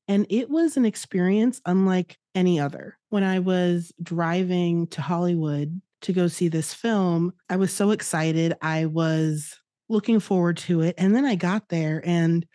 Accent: American